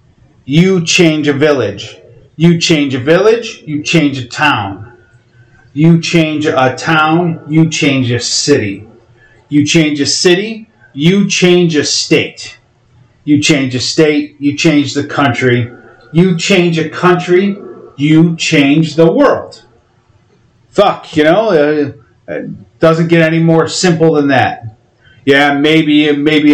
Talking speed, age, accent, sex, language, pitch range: 130 wpm, 30-49, American, male, English, 120-155 Hz